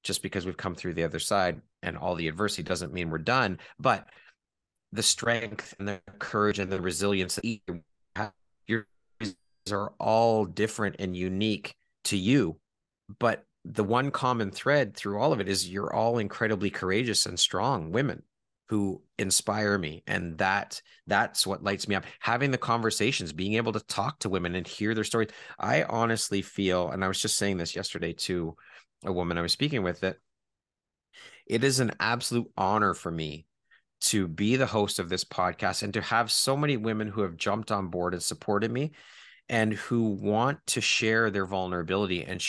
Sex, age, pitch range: male, 30-49, 90-110 Hz